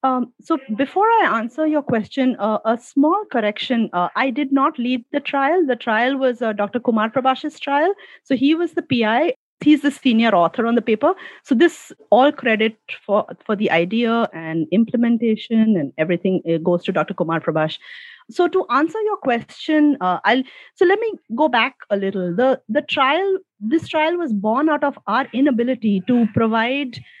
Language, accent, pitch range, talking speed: English, Indian, 215-285 Hz, 185 wpm